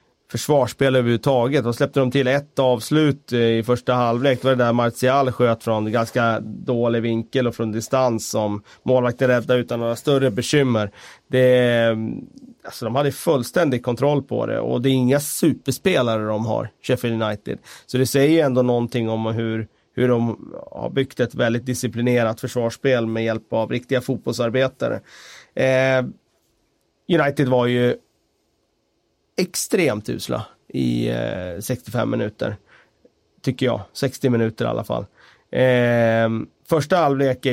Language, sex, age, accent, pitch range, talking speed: Swedish, male, 30-49, native, 115-130 Hz, 140 wpm